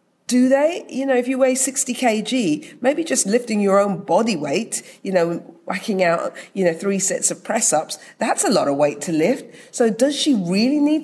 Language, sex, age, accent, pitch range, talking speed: English, female, 40-59, British, 160-225 Hz, 205 wpm